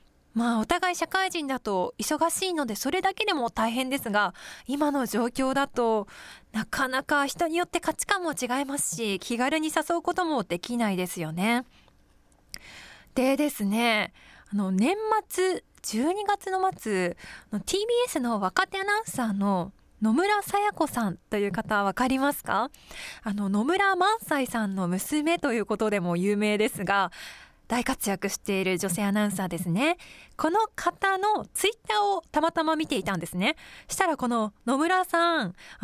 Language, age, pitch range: Japanese, 20-39, 210-340 Hz